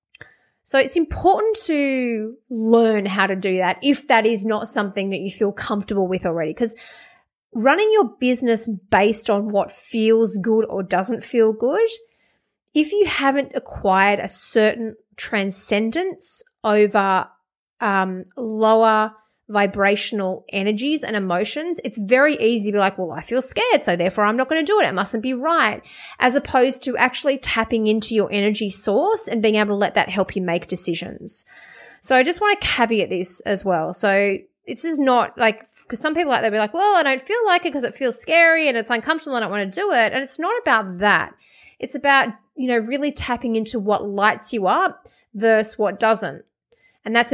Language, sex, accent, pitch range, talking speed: English, female, Australian, 205-265 Hz, 190 wpm